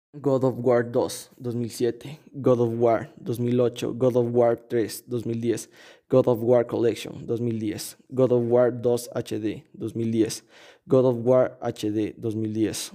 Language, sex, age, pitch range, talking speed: Spanish, male, 20-39, 115-130 Hz, 140 wpm